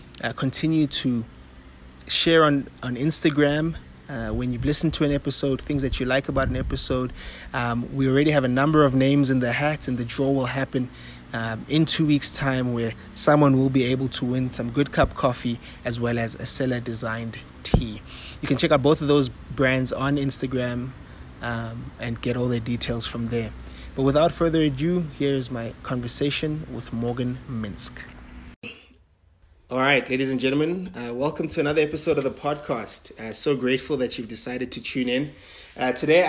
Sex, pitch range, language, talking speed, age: male, 120-145 Hz, English, 185 wpm, 30-49